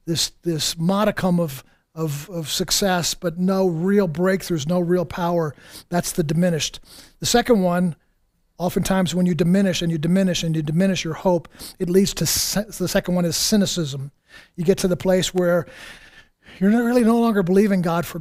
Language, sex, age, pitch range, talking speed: English, male, 50-69, 170-195 Hz, 180 wpm